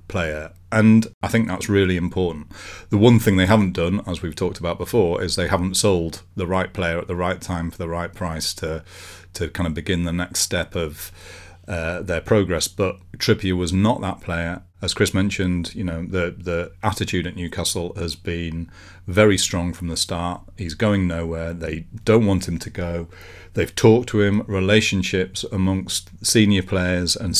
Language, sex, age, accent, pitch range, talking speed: English, male, 40-59, British, 85-100 Hz, 185 wpm